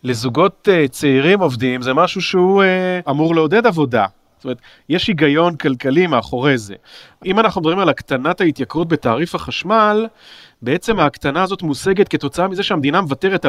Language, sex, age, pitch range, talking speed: Hebrew, male, 40-59, 135-180 Hz, 150 wpm